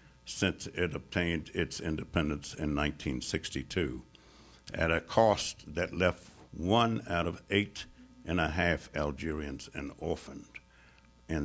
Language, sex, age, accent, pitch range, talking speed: English, male, 60-79, American, 75-100 Hz, 120 wpm